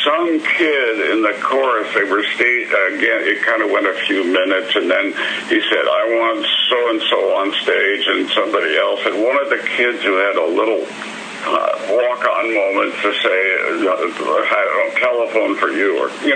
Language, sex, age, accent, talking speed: English, male, 60-79, American, 195 wpm